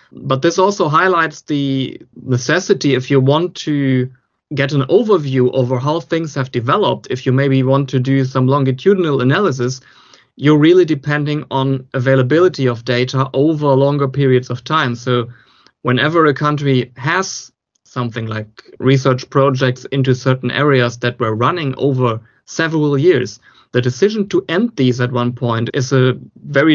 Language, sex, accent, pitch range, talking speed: English, male, German, 125-145 Hz, 155 wpm